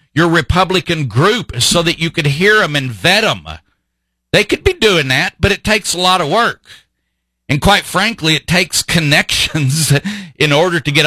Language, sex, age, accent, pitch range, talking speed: English, male, 50-69, American, 120-160 Hz, 185 wpm